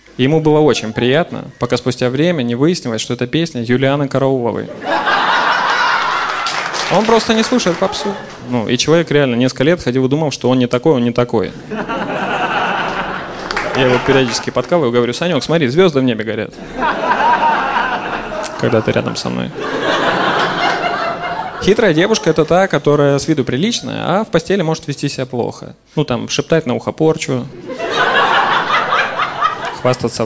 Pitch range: 120-155 Hz